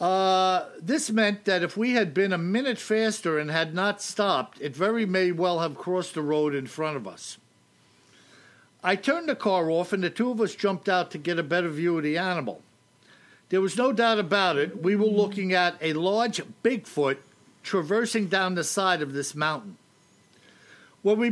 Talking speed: 195 wpm